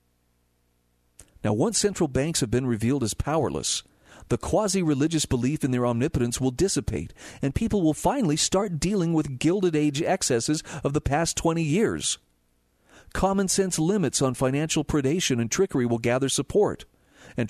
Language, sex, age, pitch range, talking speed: English, male, 40-59, 120-160 Hz, 145 wpm